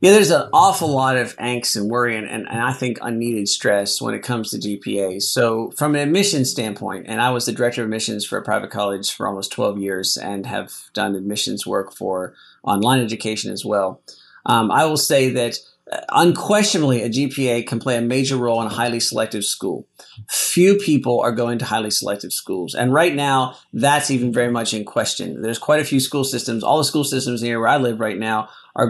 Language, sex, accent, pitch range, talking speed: English, male, American, 110-130 Hz, 210 wpm